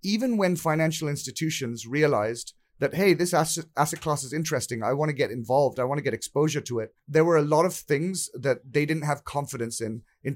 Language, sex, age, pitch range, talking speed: English, male, 30-49, 125-160 Hz, 205 wpm